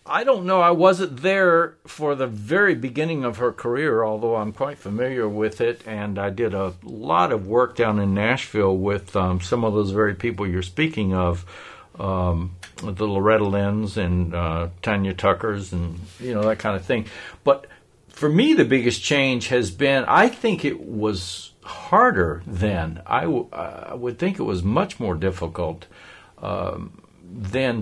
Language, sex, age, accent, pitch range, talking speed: English, male, 60-79, American, 90-115 Hz, 175 wpm